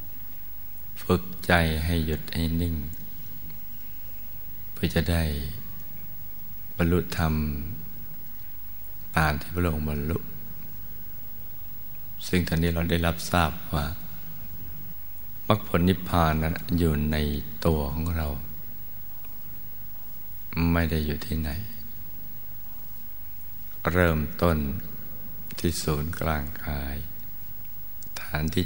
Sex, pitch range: male, 75-85 Hz